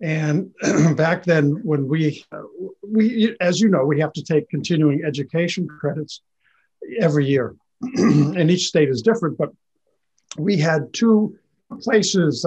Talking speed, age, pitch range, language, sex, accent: 140 wpm, 50-69, 145-180 Hz, English, male, American